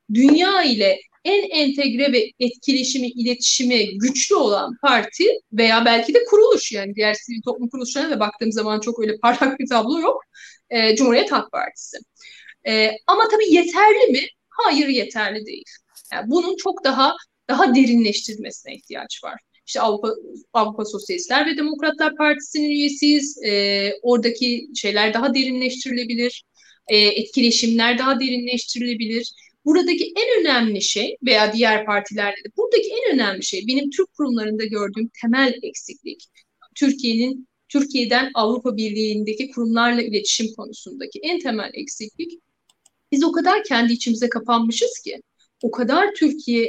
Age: 30-49